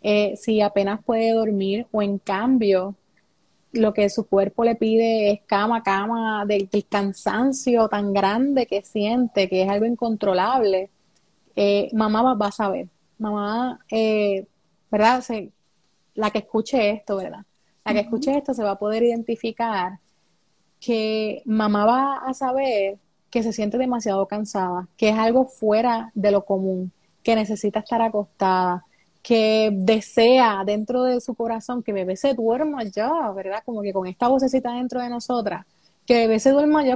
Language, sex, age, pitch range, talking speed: Spanish, female, 30-49, 200-235 Hz, 160 wpm